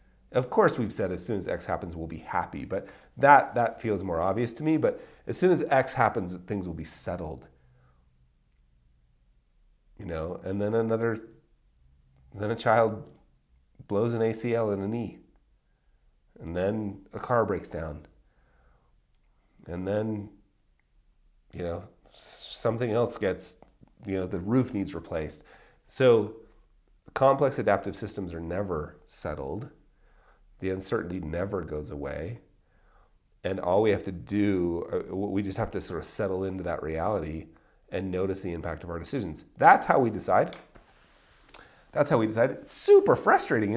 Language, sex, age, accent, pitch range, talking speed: English, male, 40-59, American, 85-115 Hz, 150 wpm